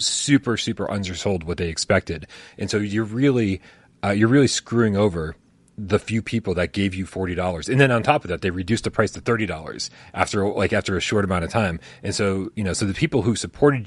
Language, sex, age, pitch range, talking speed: English, male, 30-49, 90-110 Hz, 230 wpm